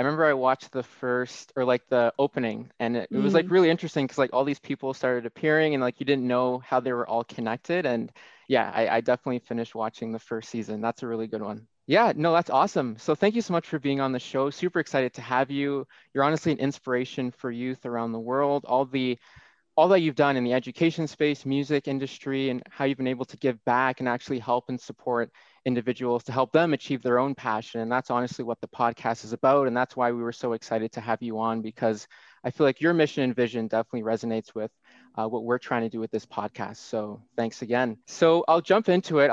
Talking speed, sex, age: 240 wpm, male, 20-39